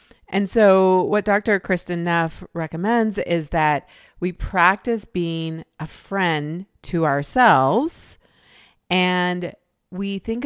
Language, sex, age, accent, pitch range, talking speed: English, female, 30-49, American, 165-205 Hz, 110 wpm